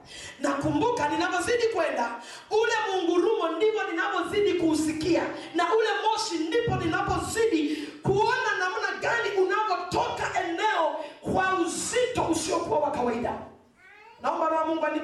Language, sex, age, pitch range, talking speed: English, female, 40-59, 305-390 Hz, 120 wpm